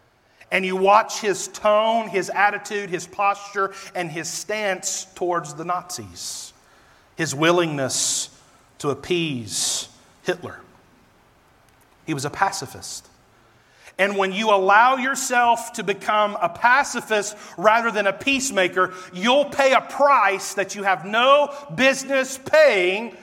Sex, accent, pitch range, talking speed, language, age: male, American, 180-260 Hz, 120 wpm, English, 40-59